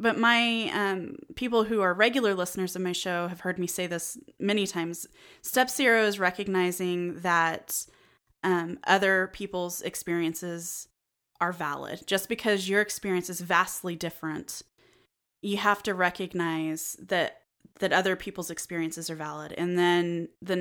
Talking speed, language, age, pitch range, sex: 145 wpm, English, 20-39, 170-200 Hz, female